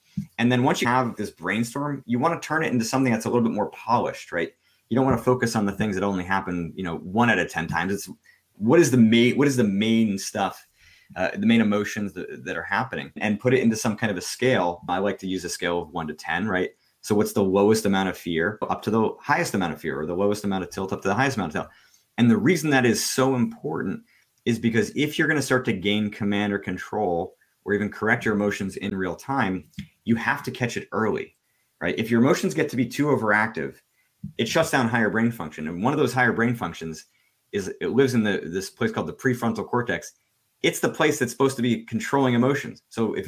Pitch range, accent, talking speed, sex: 100-125 Hz, American, 250 wpm, male